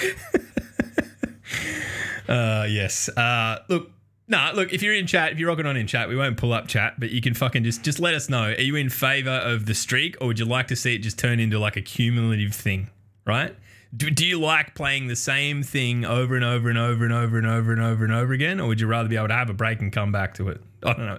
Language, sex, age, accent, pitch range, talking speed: English, male, 20-39, Australian, 95-125 Hz, 260 wpm